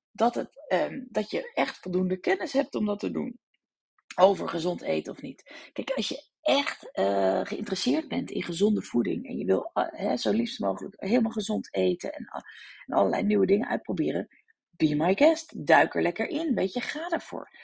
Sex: female